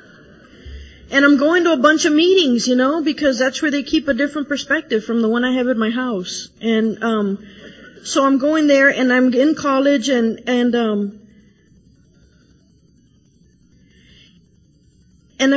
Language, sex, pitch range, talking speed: English, female, 275-360 Hz, 155 wpm